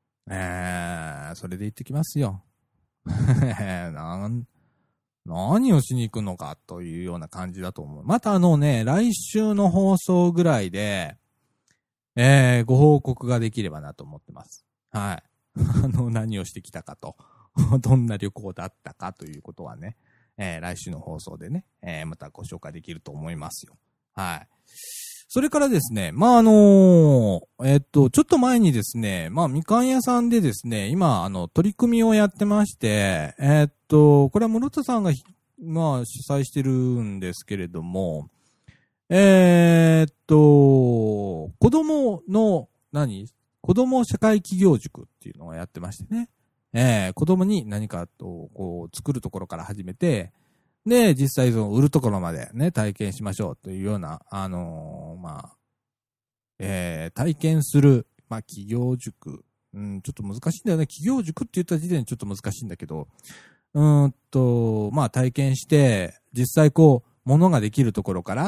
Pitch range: 100-165 Hz